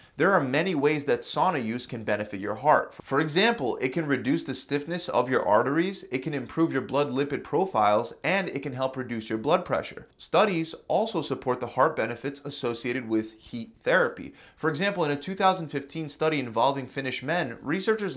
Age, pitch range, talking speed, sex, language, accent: 30-49, 125-160 Hz, 185 wpm, male, English, American